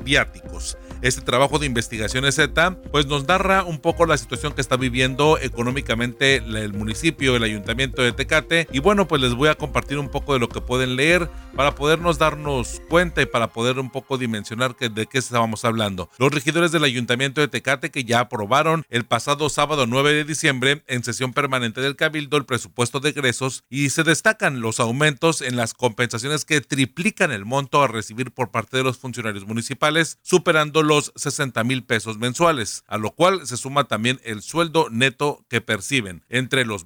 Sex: male